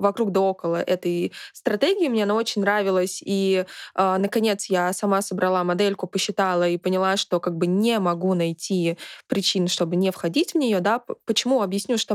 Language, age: Russian, 20-39